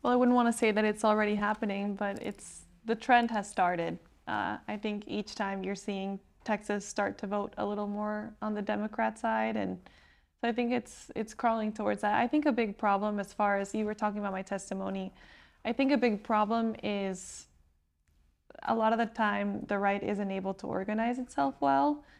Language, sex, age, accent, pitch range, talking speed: English, female, 20-39, American, 195-220 Hz, 205 wpm